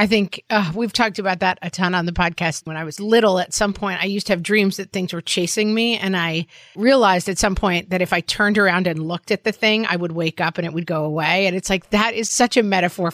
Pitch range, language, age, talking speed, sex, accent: 175-220 Hz, English, 30-49, 285 wpm, female, American